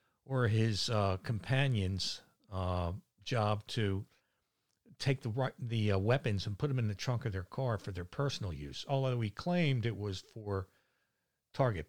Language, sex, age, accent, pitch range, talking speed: English, male, 60-79, American, 110-145 Hz, 160 wpm